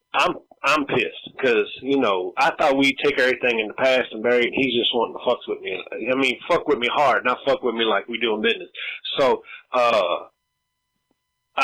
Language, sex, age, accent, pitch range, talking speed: English, male, 30-49, American, 130-165 Hz, 210 wpm